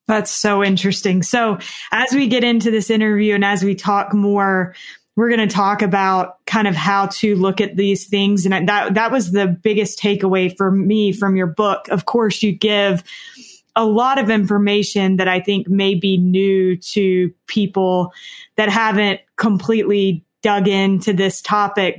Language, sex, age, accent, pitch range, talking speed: English, female, 20-39, American, 190-210 Hz, 170 wpm